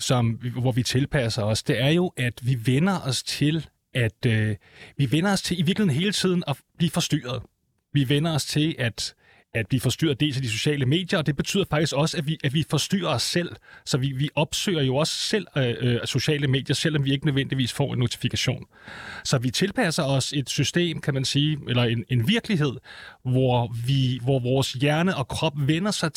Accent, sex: native, male